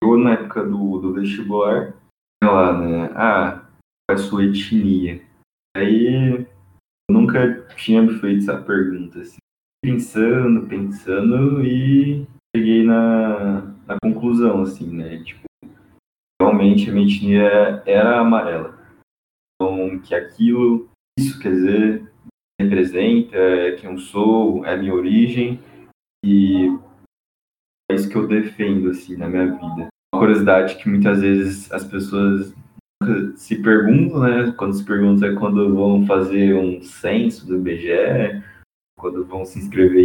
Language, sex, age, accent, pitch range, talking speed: Portuguese, male, 20-39, Brazilian, 95-115 Hz, 135 wpm